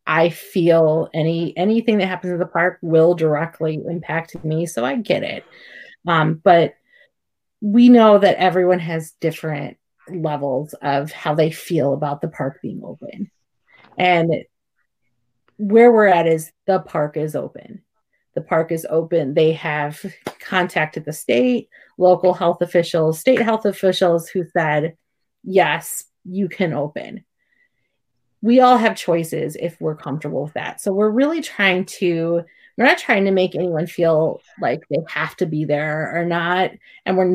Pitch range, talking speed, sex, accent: 155-185 Hz, 155 wpm, female, American